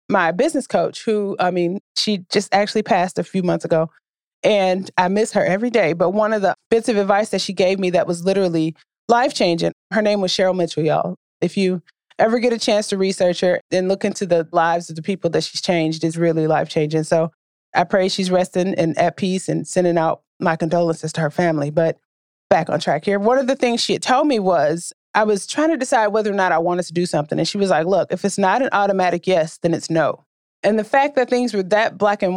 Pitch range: 170-210 Hz